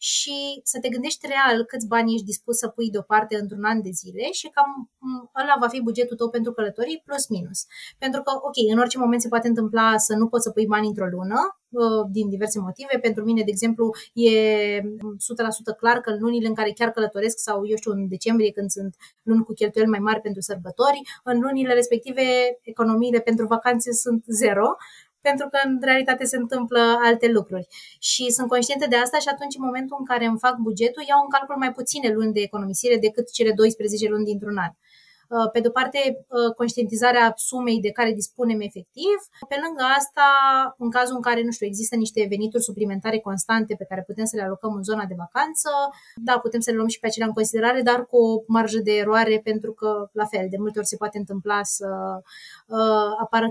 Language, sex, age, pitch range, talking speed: Romanian, female, 20-39, 215-250 Hz, 200 wpm